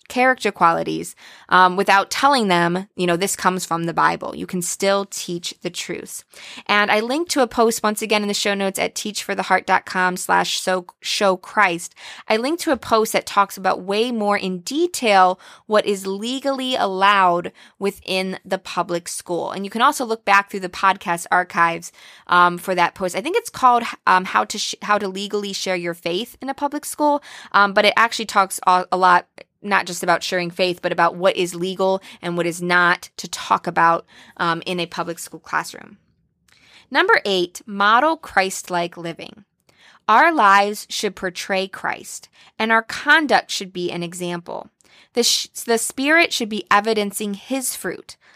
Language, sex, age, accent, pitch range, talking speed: English, female, 20-39, American, 180-225 Hz, 180 wpm